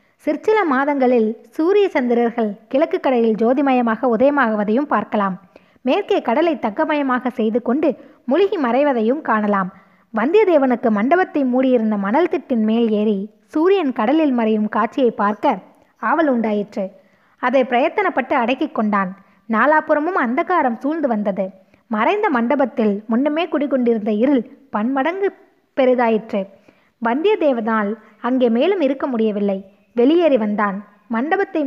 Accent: native